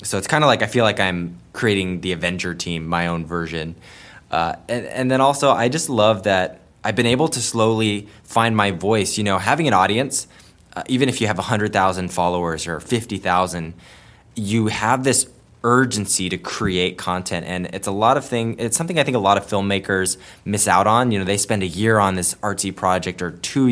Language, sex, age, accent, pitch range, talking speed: English, male, 20-39, American, 90-115 Hz, 210 wpm